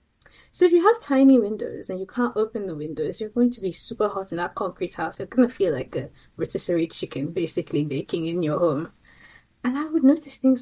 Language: English